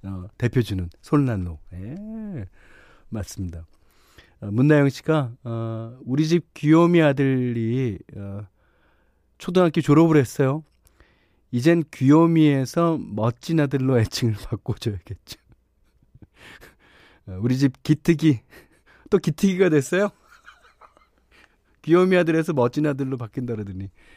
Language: Korean